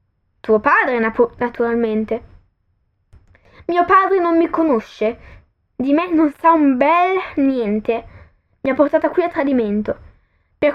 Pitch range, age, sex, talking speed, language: 225-295 Hz, 10-29, female, 125 wpm, Italian